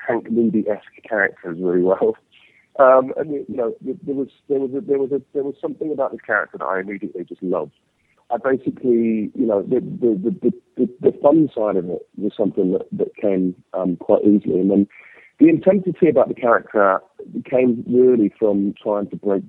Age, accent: 40-59, British